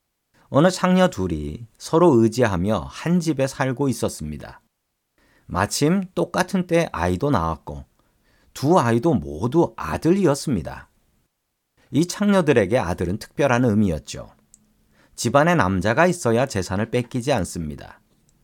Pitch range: 100-145 Hz